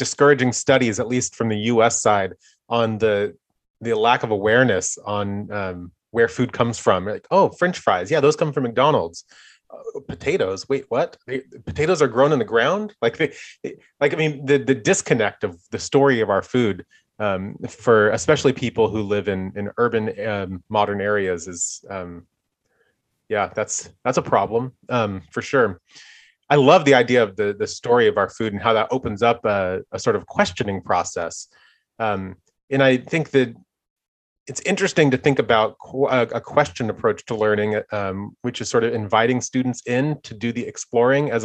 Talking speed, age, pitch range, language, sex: 185 wpm, 30-49, 105-135 Hz, English, male